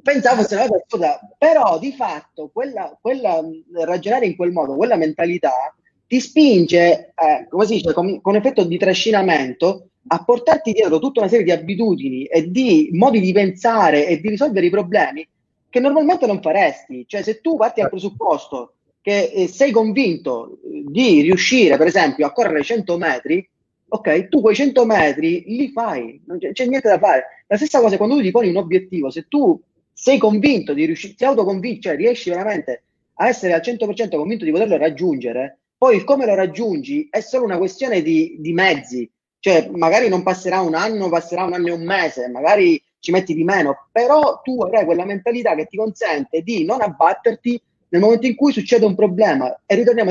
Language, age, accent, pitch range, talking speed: Italian, 30-49, native, 170-250 Hz, 185 wpm